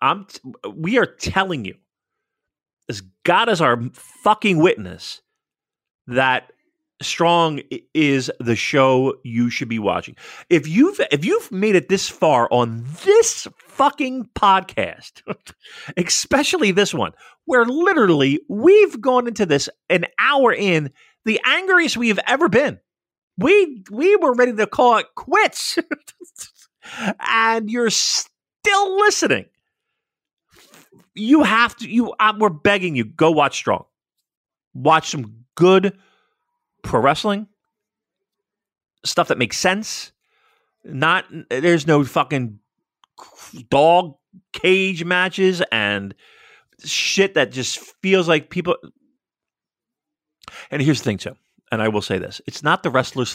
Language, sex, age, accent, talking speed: English, male, 40-59, American, 125 wpm